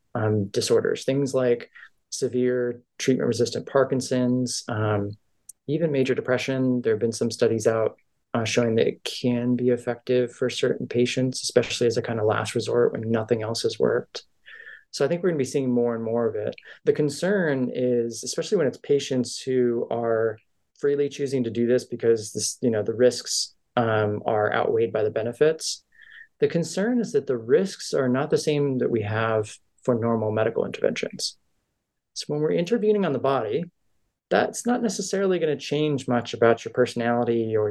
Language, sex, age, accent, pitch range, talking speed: English, male, 20-39, American, 115-165 Hz, 175 wpm